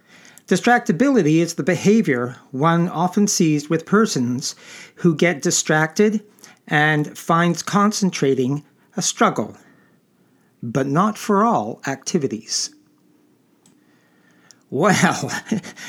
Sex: male